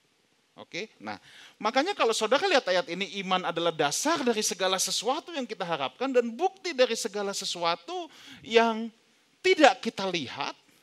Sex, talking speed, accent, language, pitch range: male, 150 wpm, native, Indonesian, 160-245 Hz